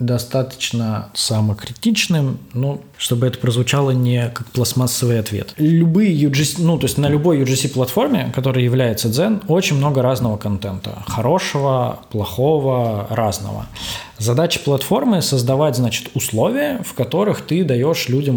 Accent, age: native, 20-39